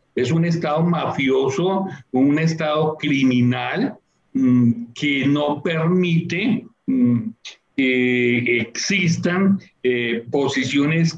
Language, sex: Spanish, male